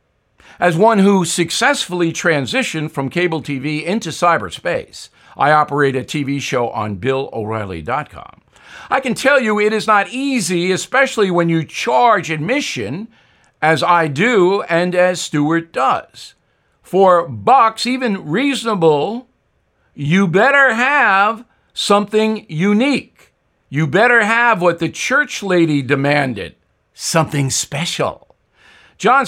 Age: 50-69